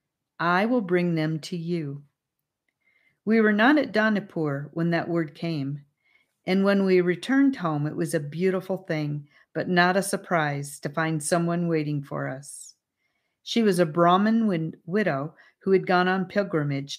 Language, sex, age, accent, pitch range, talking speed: English, female, 40-59, American, 150-195 Hz, 160 wpm